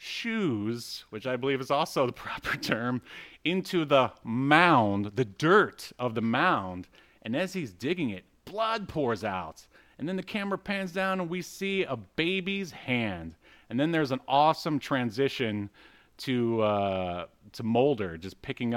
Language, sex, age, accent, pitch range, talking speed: English, male, 30-49, American, 105-145 Hz, 155 wpm